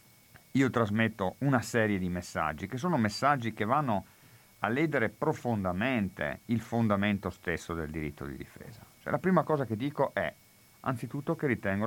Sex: male